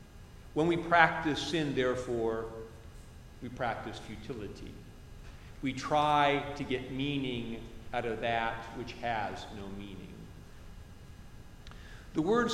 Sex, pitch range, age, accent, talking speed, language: male, 110-145 Hz, 50-69, American, 105 wpm, English